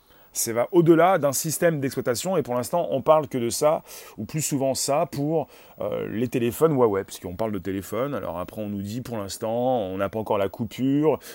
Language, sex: French, male